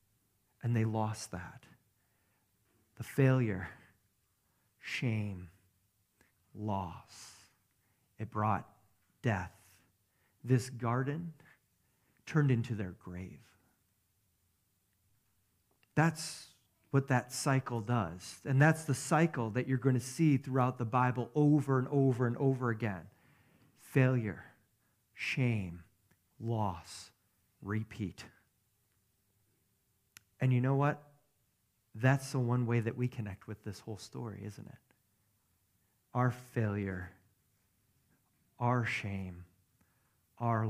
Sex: male